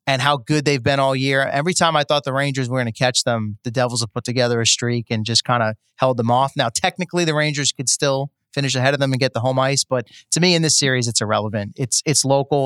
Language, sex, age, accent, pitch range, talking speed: English, male, 30-49, American, 125-150 Hz, 275 wpm